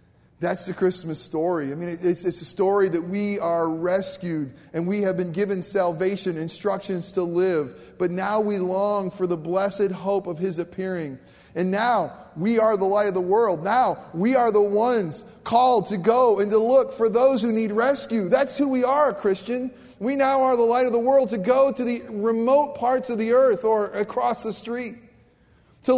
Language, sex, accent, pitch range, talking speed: English, male, American, 190-235 Hz, 200 wpm